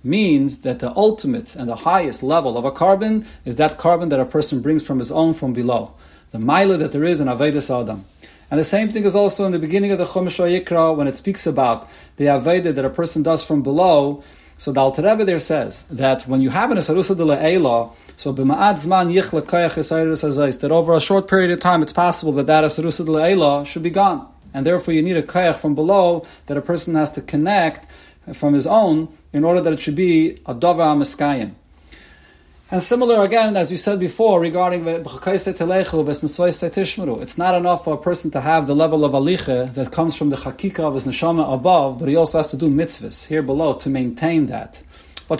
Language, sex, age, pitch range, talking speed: English, male, 40-59, 140-180 Hz, 210 wpm